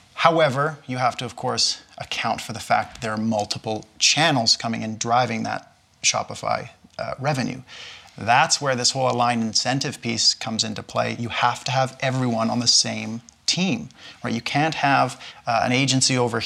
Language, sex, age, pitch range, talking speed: English, male, 30-49, 115-135 Hz, 180 wpm